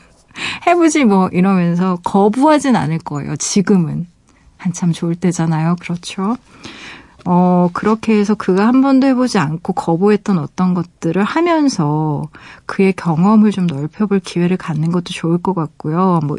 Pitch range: 170-220 Hz